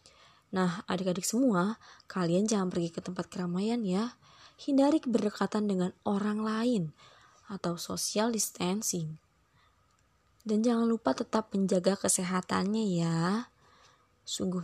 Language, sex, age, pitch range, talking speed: Indonesian, female, 20-39, 185-245 Hz, 105 wpm